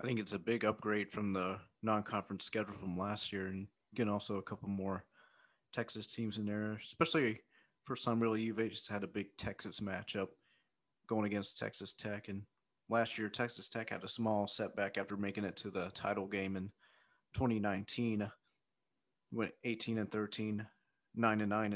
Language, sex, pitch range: English, male, 100-110 Hz